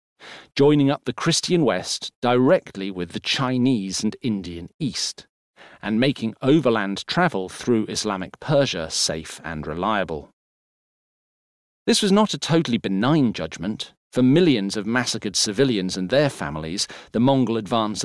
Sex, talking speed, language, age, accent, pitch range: male, 135 wpm, English, 40-59, British, 95-140 Hz